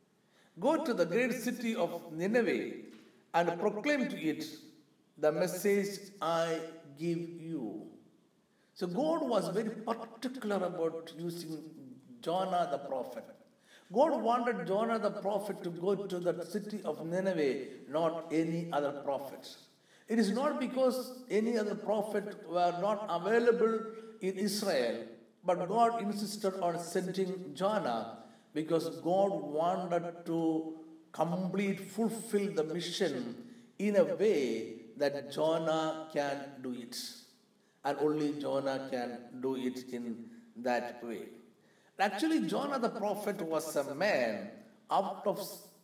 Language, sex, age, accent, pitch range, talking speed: Malayalam, male, 60-79, native, 160-225 Hz, 125 wpm